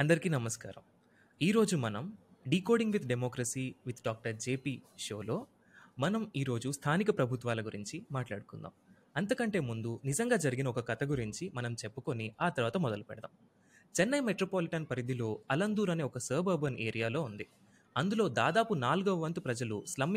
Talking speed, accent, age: 135 wpm, native, 20-39